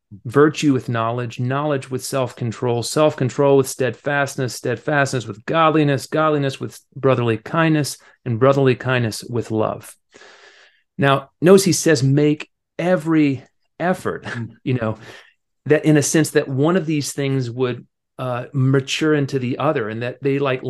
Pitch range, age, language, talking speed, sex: 120-150 Hz, 40-59, English, 140 wpm, male